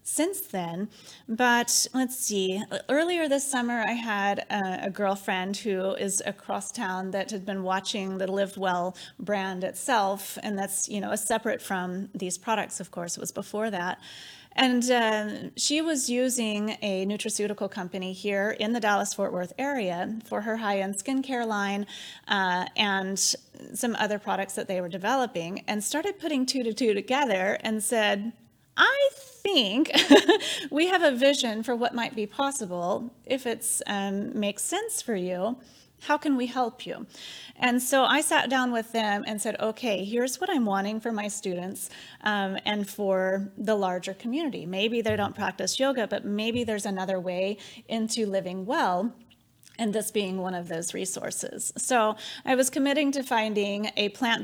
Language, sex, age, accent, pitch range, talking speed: English, female, 30-49, American, 195-245 Hz, 170 wpm